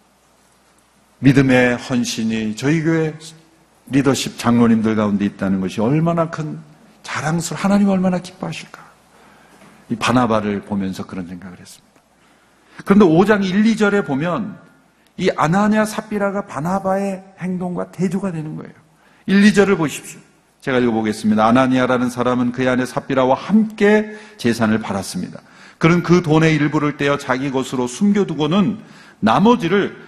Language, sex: Korean, male